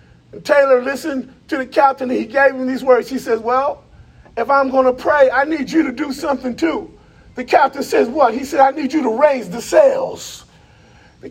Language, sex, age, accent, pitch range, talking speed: English, male, 30-49, American, 270-360 Hz, 210 wpm